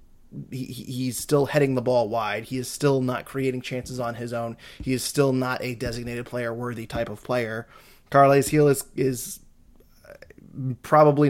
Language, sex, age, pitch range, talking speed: English, male, 20-39, 120-135 Hz, 165 wpm